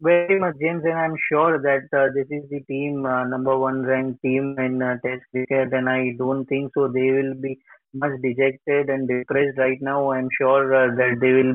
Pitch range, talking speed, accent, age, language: 135-150 Hz, 215 wpm, Indian, 30-49, English